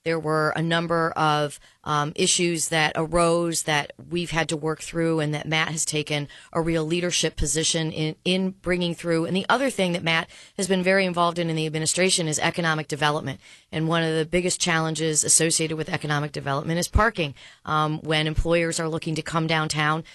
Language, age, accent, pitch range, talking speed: English, 40-59, American, 155-175 Hz, 195 wpm